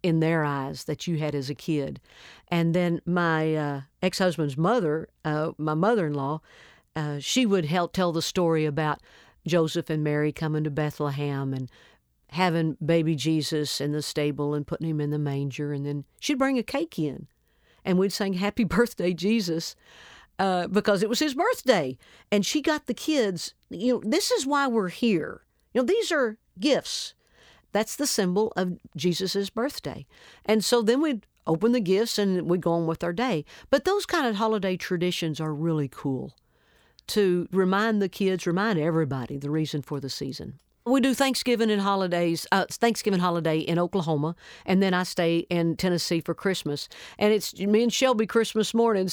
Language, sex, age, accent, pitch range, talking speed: English, female, 50-69, American, 155-215 Hz, 175 wpm